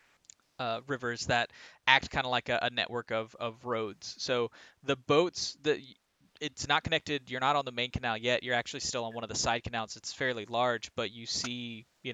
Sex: male